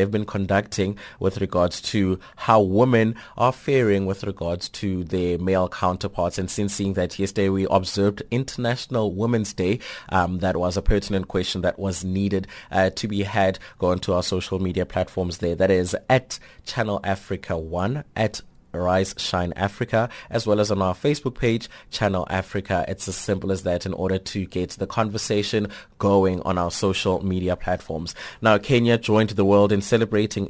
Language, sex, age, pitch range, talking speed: English, male, 20-39, 95-105 Hz, 175 wpm